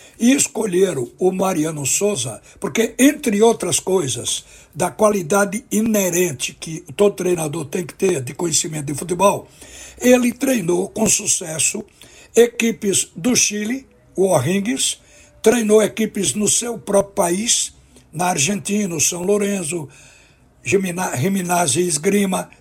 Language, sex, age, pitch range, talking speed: Portuguese, male, 60-79, 175-215 Hz, 120 wpm